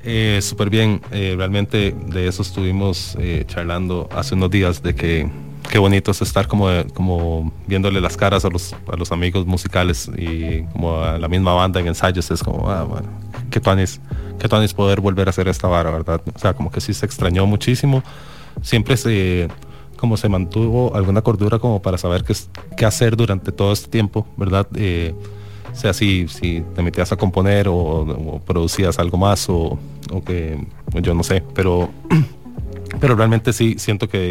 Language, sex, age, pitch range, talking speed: English, male, 30-49, 90-105 Hz, 185 wpm